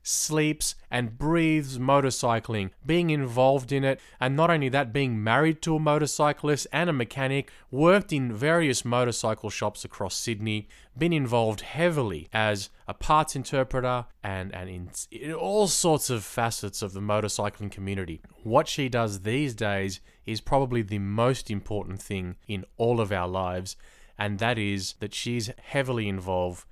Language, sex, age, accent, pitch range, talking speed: English, male, 20-39, Australian, 100-140 Hz, 155 wpm